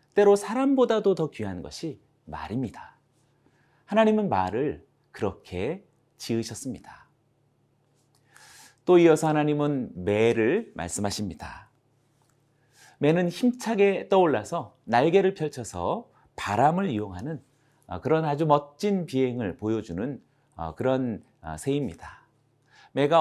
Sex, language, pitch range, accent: male, Korean, 110-160 Hz, native